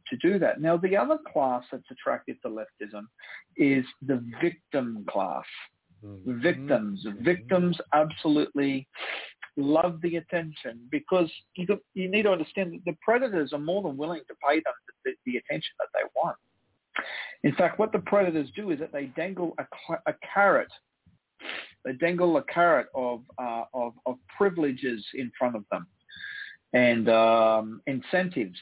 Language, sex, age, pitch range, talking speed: English, male, 50-69, 130-175 Hz, 155 wpm